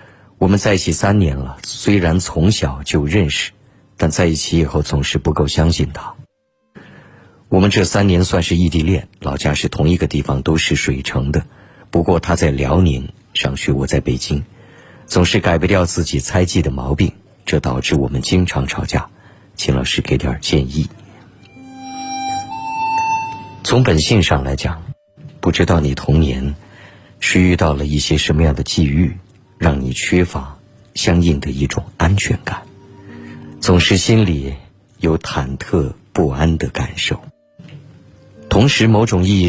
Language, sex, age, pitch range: Chinese, male, 50-69, 75-110 Hz